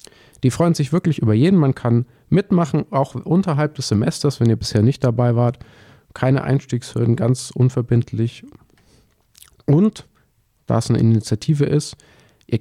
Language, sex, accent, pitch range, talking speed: English, male, German, 115-145 Hz, 145 wpm